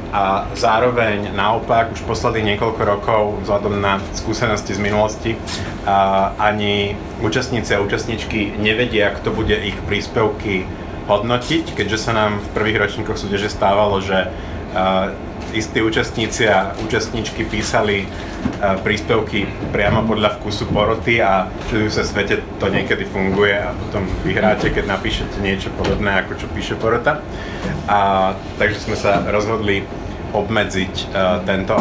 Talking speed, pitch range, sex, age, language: 135 wpm, 95-110 Hz, male, 30-49, Czech